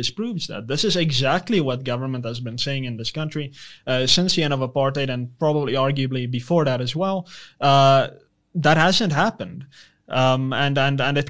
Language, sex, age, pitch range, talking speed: English, male, 20-39, 130-160 Hz, 185 wpm